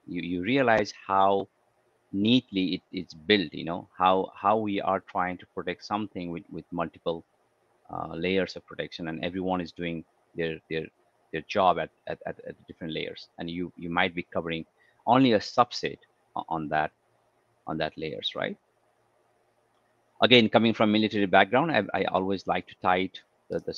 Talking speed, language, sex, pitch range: 170 wpm, English, male, 85-100 Hz